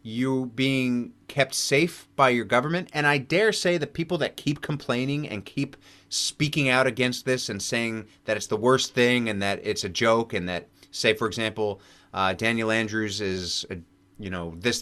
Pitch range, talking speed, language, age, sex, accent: 100-135 Hz, 190 wpm, English, 30-49, male, American